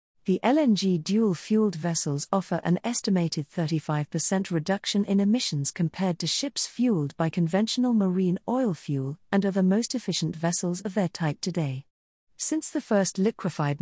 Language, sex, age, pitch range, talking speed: English, female, 40-59, 160-210 Hz, 150 wpm